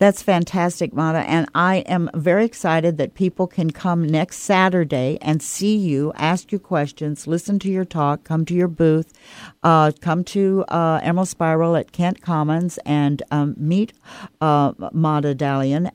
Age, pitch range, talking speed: 60-79, 150-185 Hz, 160 wpm